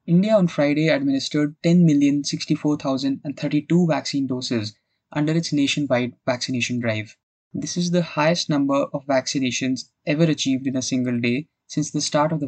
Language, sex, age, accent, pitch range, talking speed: English, male, 20-39, Indian, 135-160 Hz, 145 wpm